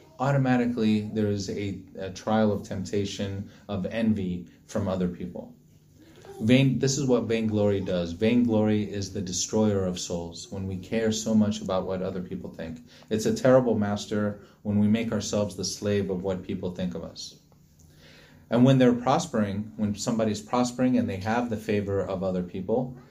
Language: English